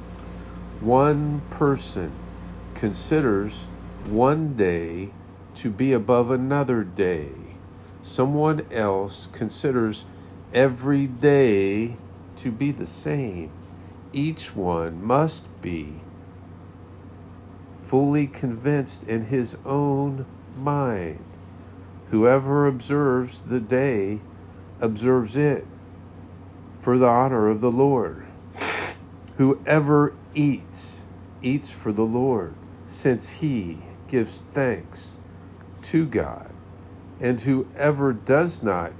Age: 50-69